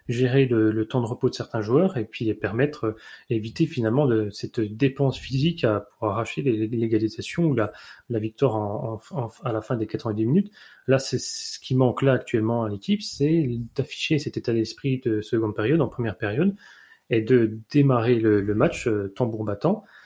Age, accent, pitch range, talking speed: 30-49, French, 110-135 Hz, 205 wpm